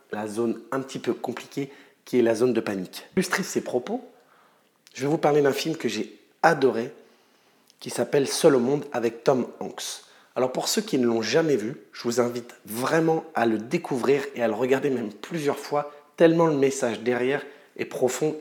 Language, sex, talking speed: French, male, 200 wpm